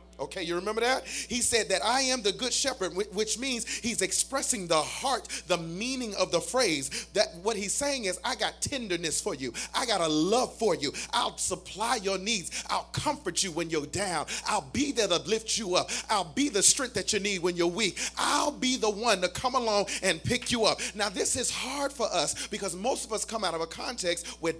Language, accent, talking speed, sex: English, American, 225 wpm, male